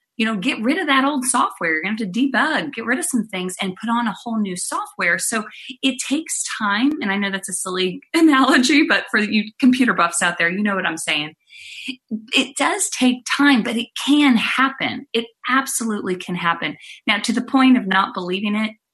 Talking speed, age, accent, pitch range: 220 wpm, 30-49, American, 185-255 Hz